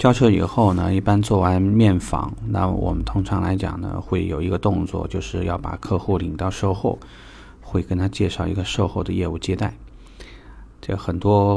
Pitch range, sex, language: 90-110 Hz, male, Chinese